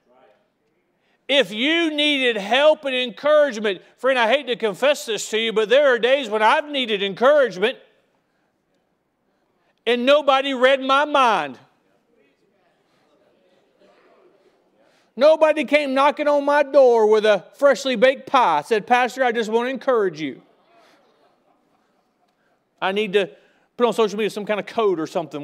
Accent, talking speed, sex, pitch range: American, 140 wpm, male, 225-290 Hz